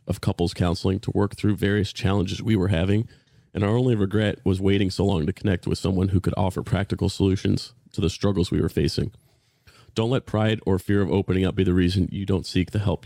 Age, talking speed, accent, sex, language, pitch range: 30-49, 230 wpm, American, male, English, 95-115 Hz